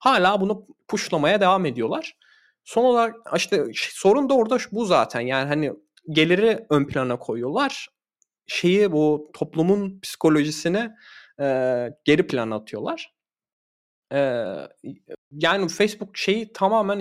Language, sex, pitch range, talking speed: Turkish, male, 120-165 Hz, 115 wpm